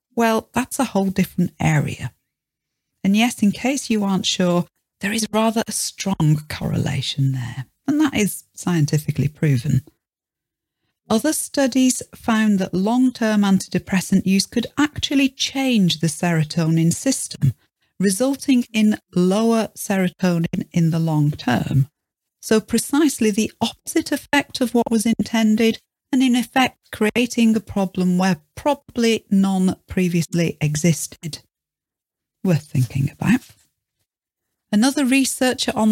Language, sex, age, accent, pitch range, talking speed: English, female, 40-59, British, 170-240 Hz, 120 wpm